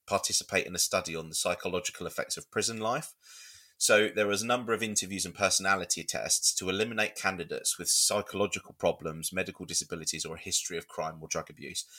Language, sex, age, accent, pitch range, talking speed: English, male, 30-49, British, 90-105 Hz, 185 wpm